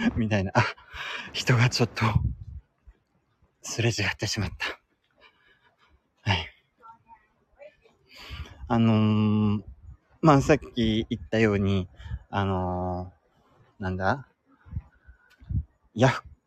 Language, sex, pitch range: Japanese, male, 100-145 Hz